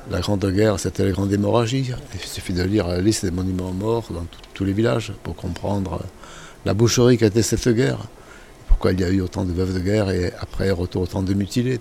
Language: French